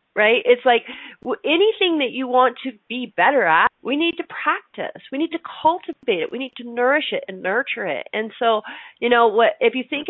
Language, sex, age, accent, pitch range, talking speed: English, female, 40-59, American, 210-295 Hz, 210 wpm